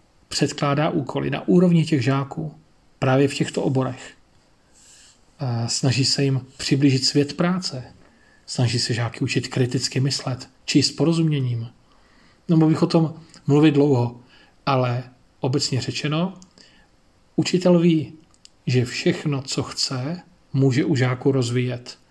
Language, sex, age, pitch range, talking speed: Slovak, male, 40-59, 125-150 Hz, 115 wpm